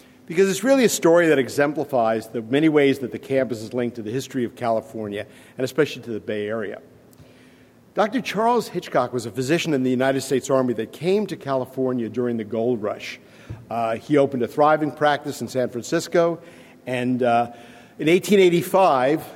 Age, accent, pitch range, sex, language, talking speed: 50-69, American, 120-150 Hz, male, English, 180 wpm